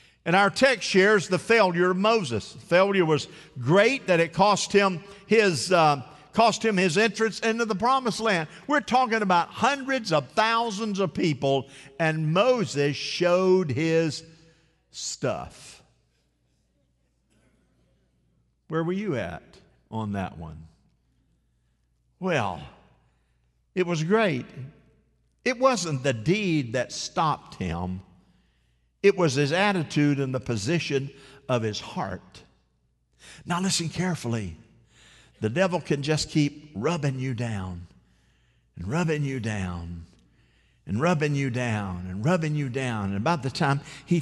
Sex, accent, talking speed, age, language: male, American, 125 wpm, 50-69, English